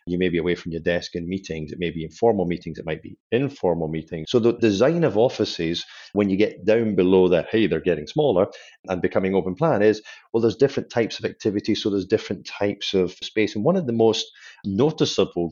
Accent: British